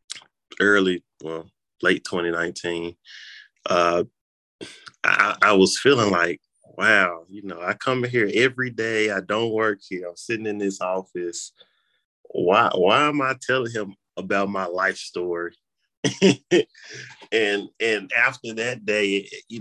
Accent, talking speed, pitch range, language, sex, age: American, 135 wpm, 90-100 Hz, English, male, 20-39